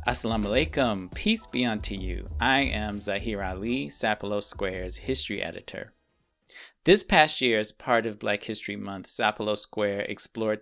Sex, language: male, English